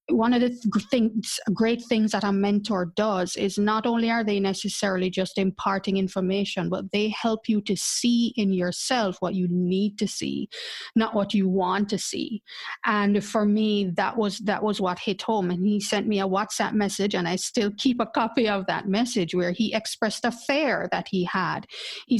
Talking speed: 200 wpm